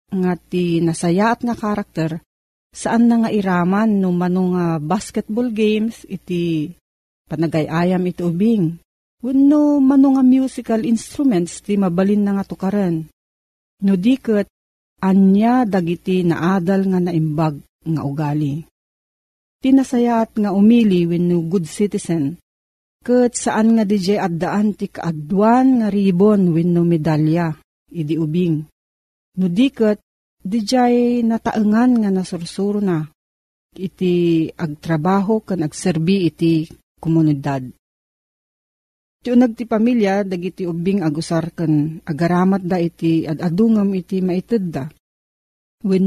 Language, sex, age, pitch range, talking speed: Filipino, female, 40-59, 165-210 Hz, 110 wpm